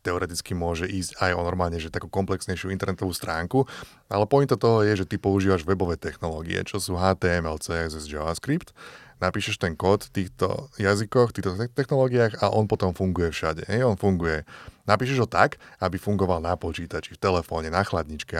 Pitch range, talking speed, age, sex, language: 90-110 Hz, 175 wpm, 20-39, male, Slovak